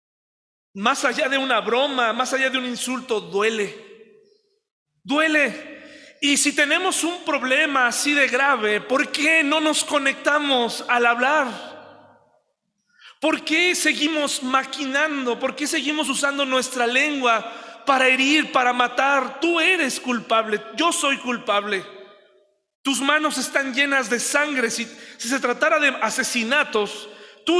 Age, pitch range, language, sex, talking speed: 40-59, 240-295 Hz, Spanish, male, 130 wpm